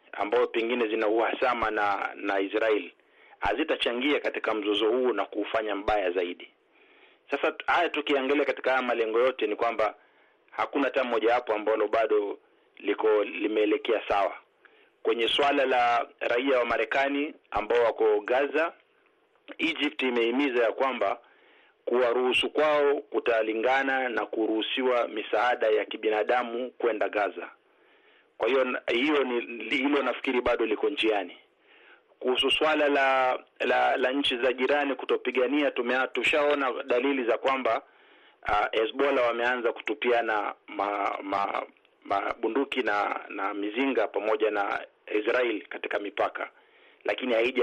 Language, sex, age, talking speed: Swahili, male, 40-59, 120 wpm